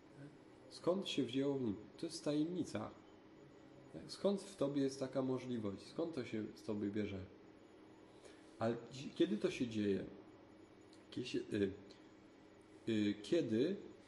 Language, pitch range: Polish, 105-135 Hz